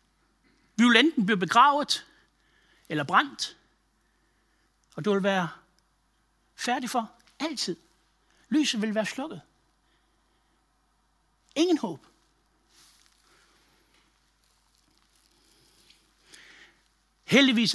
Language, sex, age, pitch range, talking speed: Danish, male, 60-79, 215-290 Hz, 65 wpm